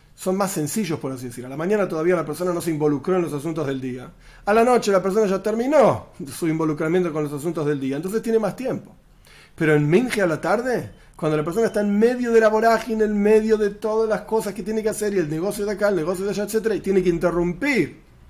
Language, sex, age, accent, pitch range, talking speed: Spanish, male, 40-59, Argentinian, 150-205 Hz, 255 wpm